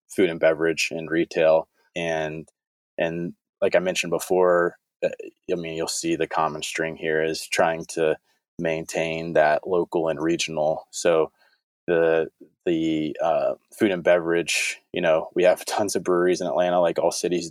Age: 20-39